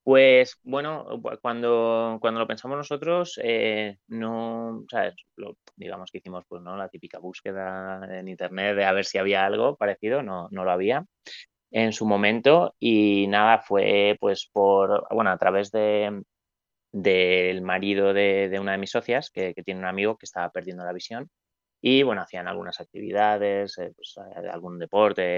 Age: 20-39